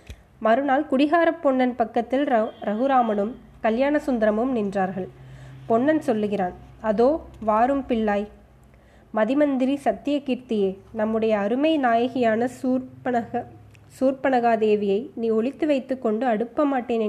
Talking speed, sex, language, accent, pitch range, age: 90 wpm, female, Tamil, native, 210-255 Hz, 20-39